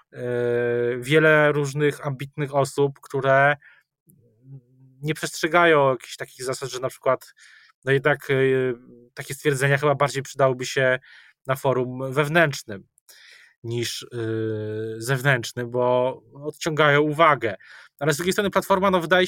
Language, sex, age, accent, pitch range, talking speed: Polish, male, 20-39, native, 125-145 Hz, 110 wpm